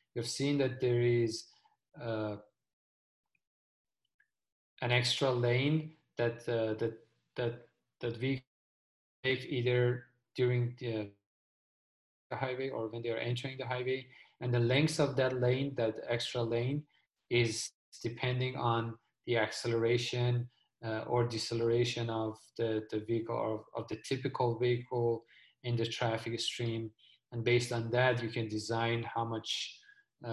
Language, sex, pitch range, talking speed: English, male, 110-130 Hz, 135 wpm